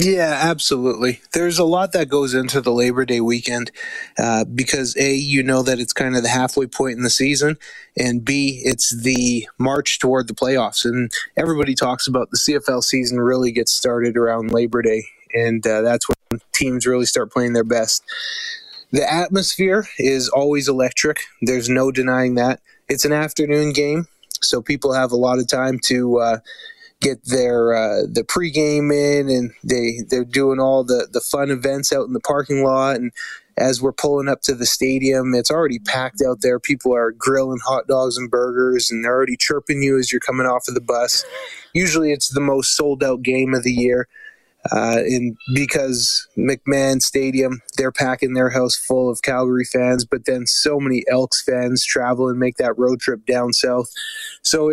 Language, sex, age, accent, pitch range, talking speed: English, male, 20-39, American, 125-145 Hz, 185 wpm